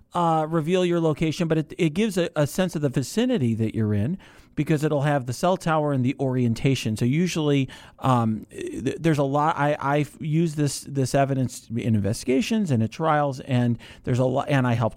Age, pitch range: 40-59, 125-160 Hz